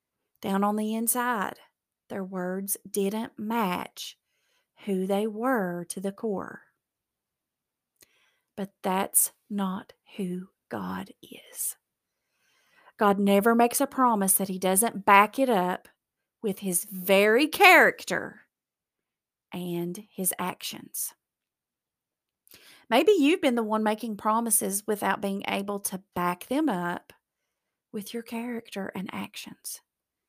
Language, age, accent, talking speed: English, 40-59, American, 115 wpm